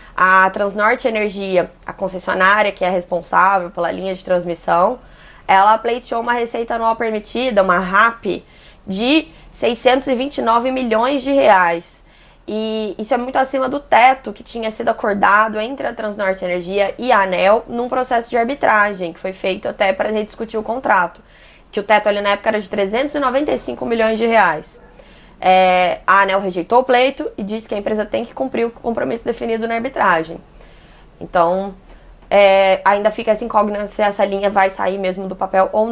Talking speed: 165 wpm